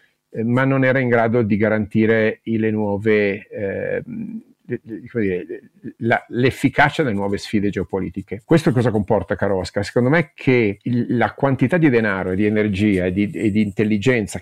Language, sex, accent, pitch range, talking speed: Italian, male, native, 100-125 Hz, 160 wpm